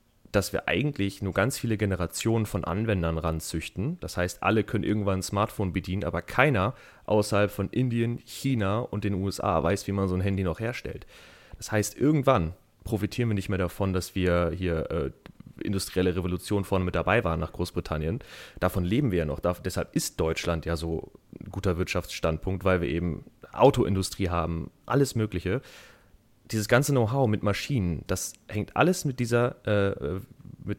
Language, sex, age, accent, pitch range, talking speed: German, male, 30-49, German, 90-115 Hz, 170 wpm